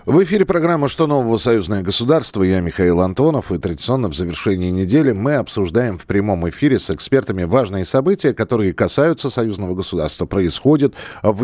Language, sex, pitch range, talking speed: Russian, male, 95-140 Hz, 155 wpm